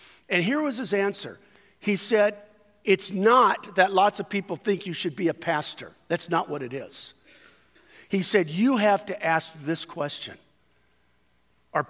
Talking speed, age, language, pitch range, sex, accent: 165 wpm, 50-69, English, 145-200 Hz, male, American